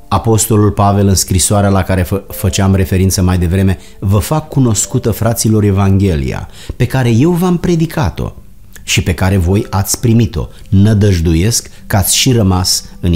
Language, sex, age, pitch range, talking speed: Romanian, male, 30-49, 95-115 Hz, 145 wpm